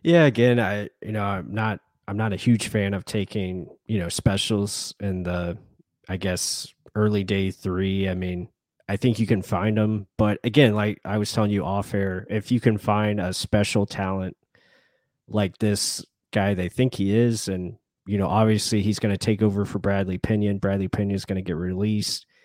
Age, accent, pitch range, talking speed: 20-39, American, 95-110 Hz, 190 wpm